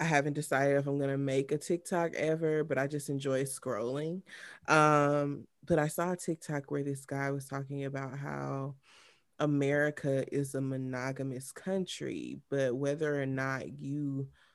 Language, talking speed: English, 160 wpm